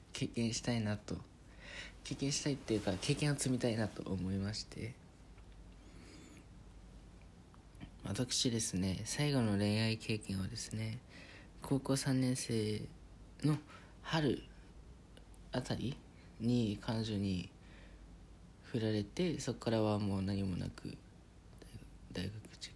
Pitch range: 90-110 Hz